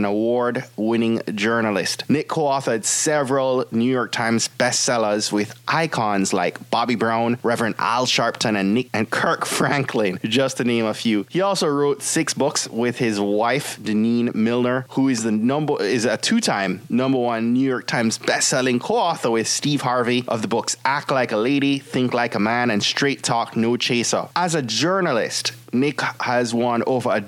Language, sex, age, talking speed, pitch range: English, male, 20-39, 170 wpm, 110-135 Hz